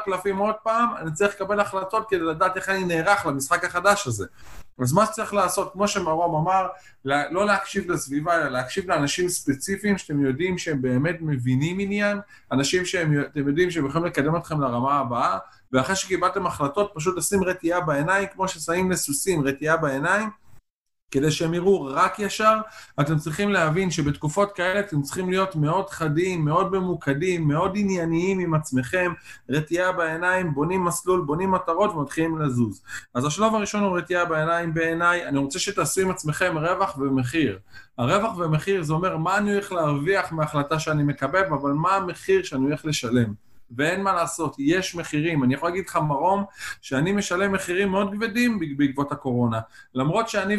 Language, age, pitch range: Hebrew, 20-39, 150-195 Hz